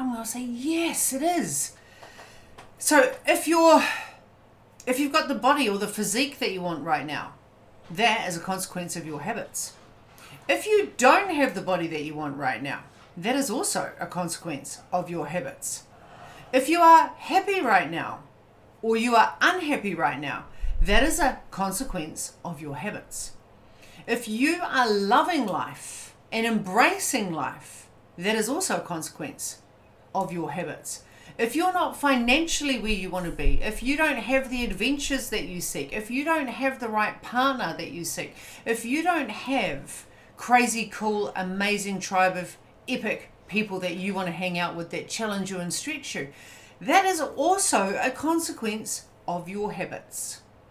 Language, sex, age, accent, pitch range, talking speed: English, female, 40-59, Australian, 175-275 Hz, 170 wpm